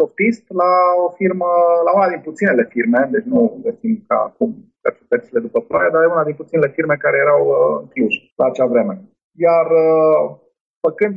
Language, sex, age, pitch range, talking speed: Romanian, male, 30-49, 160-220 Hz, 170 wpm